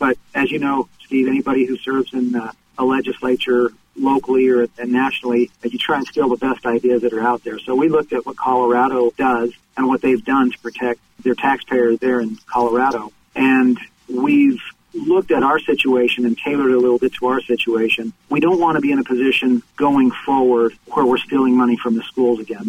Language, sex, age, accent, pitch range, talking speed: English, male, 40-59, American, 120-135 Hz, 200 wpm